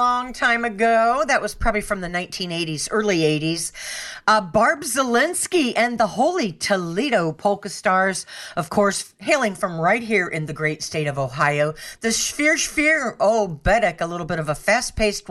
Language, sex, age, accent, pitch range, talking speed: English, female, 40-59, American, 175-245 Hz, 170 wpm